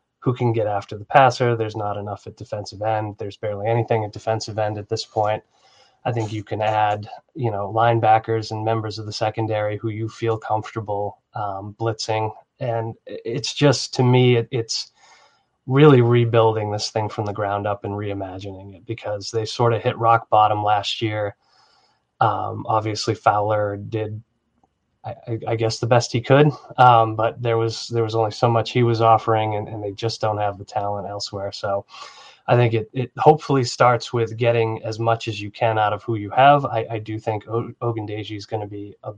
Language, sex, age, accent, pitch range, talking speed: English, male, 20-39, American, 105-115 Hz, 195 wpm